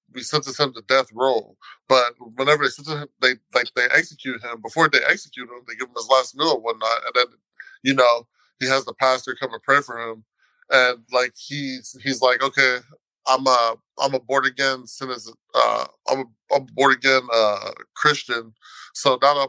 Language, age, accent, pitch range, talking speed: English, 20-39, American, 120-145 Hz, 205 wpm